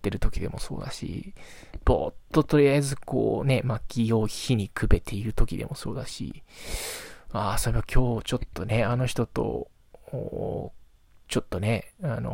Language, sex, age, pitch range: Japanese, male, 20-39, 105-130 Hz